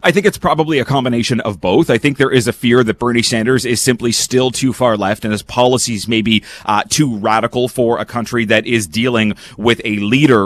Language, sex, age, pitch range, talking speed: English, male, 30-49, 110-135 Hz, 230 wpm